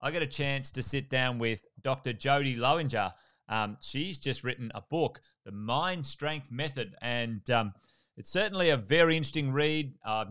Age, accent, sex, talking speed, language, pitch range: 30-49, Australian, male, 175 wpm, English, 115-140 Hz